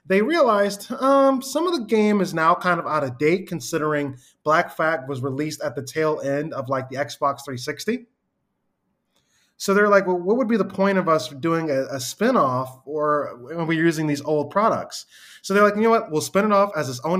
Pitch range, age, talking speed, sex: 145-190 Hz, 20-39, 215 wpm, male